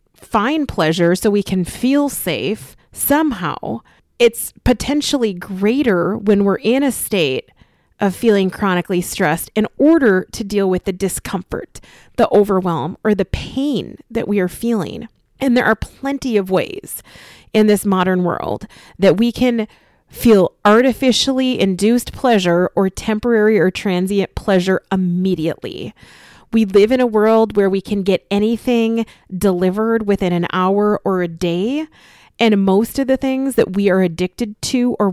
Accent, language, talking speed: American, English, 150 wpm